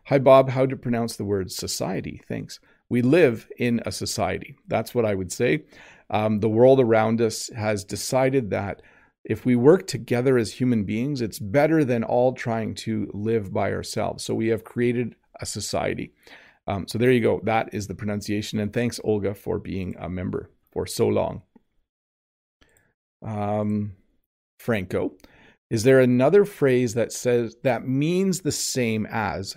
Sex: male